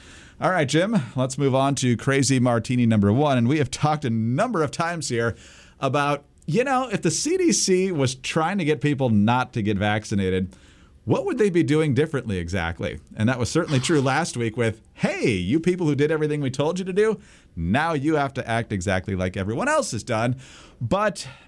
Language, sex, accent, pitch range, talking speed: English, male, American, 110-155 Hz, 205 wpm